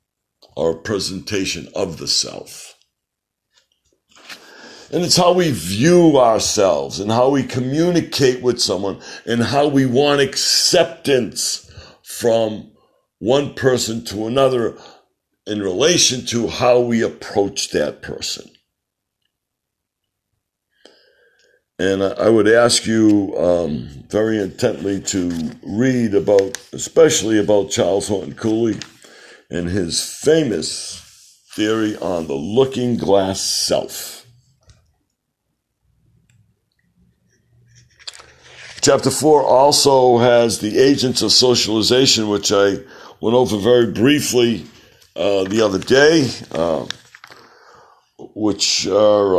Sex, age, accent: male, 60-79, American